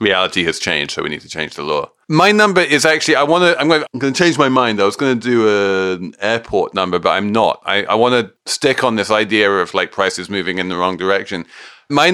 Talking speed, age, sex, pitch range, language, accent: 260 wpm, 40-59, male, 95-140 Hz, English, British